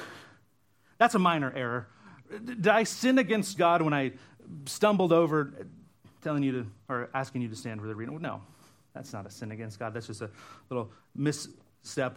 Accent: American